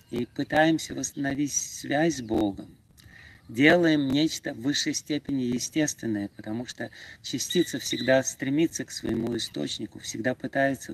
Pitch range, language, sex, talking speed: 110-150 Hz, Russian, male, 120 wpm